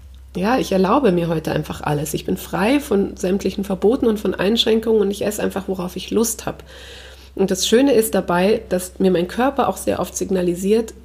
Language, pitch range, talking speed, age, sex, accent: German, 190-225 Hz, 200 wpm, 30-49, female, German